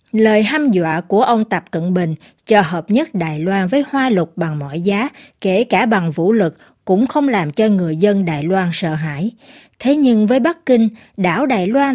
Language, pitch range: Vietnamese, 180-245 Hz